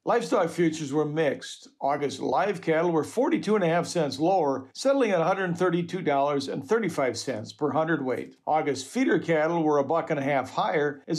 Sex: male